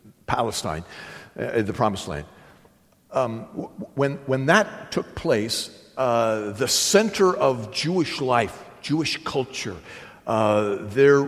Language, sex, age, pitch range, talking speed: English, male, 50-69, 125-180 Hz, 110 wpm